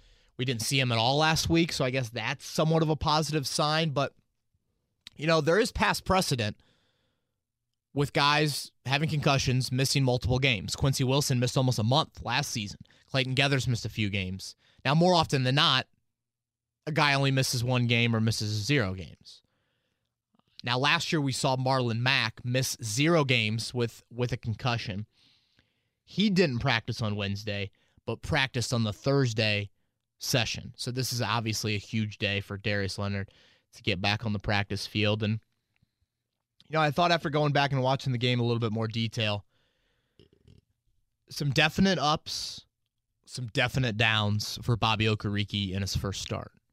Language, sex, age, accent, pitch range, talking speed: English, male, 30-49, American, 110-145 Hz, 170 wpm